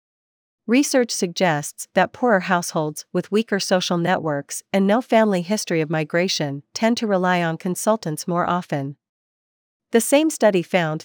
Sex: female